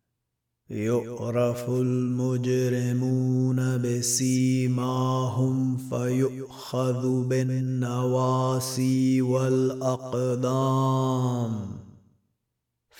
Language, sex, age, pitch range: Arabic, male, 30-49, 120-130 Hz